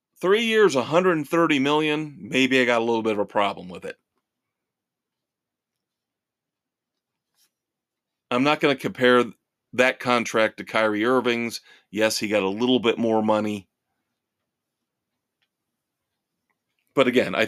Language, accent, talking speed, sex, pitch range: English, American, 125 wpm, male, 105-130 Hz